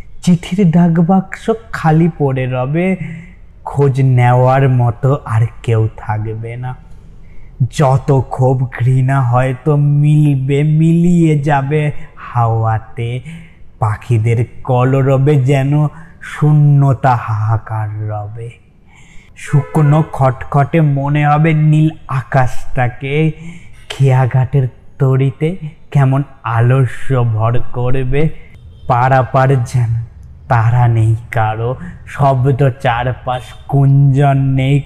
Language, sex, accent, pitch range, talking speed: Bengali, male, native, 120-145 Hz, 85 wpm